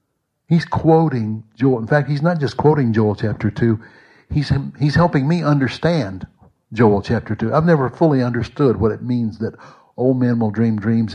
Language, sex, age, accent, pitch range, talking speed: English, male, 60-79, American, 110-130 Hz, 180 wpm